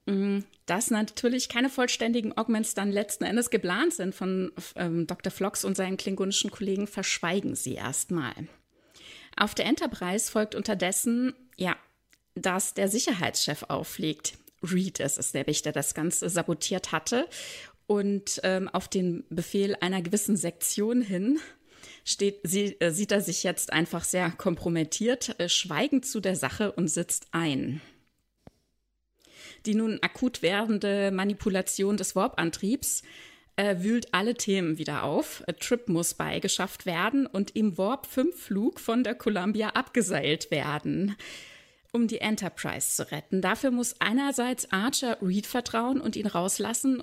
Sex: female